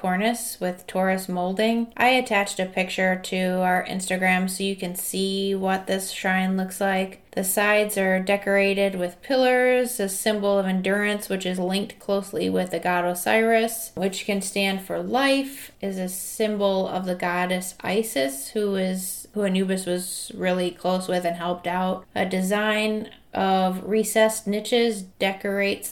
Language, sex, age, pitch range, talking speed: English, female, 20-39, 185-215 Hz, 155 wpm